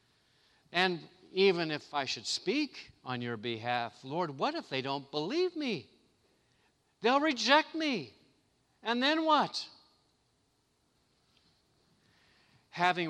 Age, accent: 50-69, American